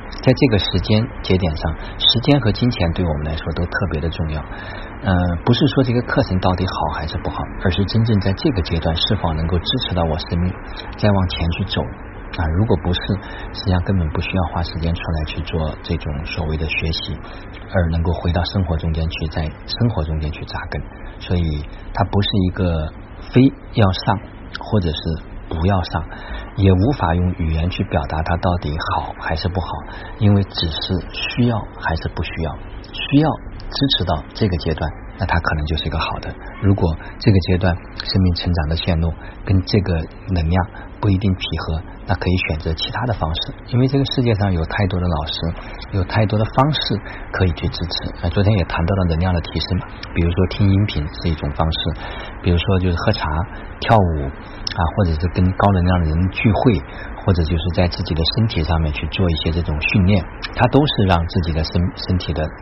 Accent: native